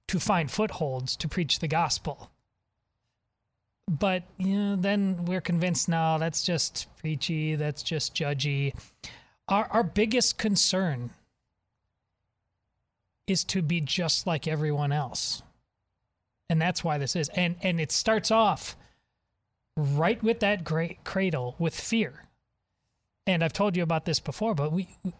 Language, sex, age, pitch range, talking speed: English, male, 30-49, 130-185 Hz, 135 wpm